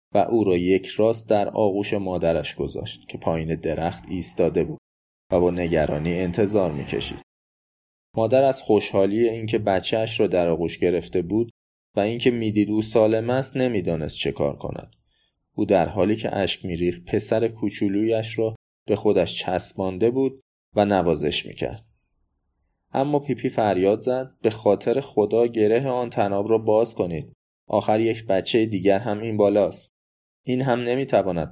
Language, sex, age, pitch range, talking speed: Persian, male, 20-39, 90-115 Hz, 150 wpm